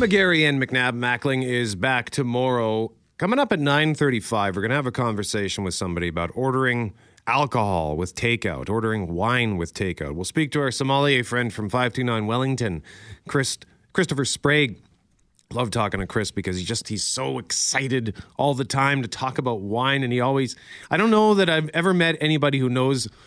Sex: male